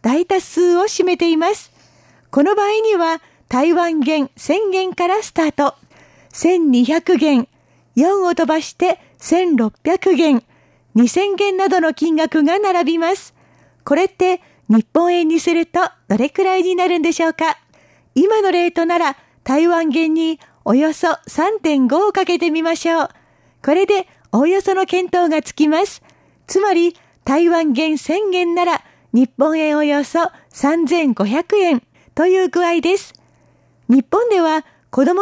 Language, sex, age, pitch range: Japanese, female, 40-59, 305-365 Hz